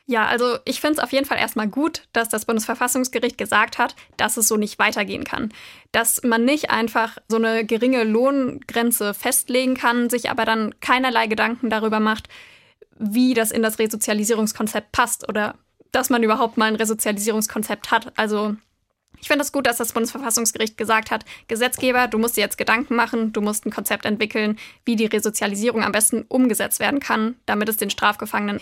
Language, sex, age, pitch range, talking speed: German, female, 20-39, 220-245 Hz, 180 wpm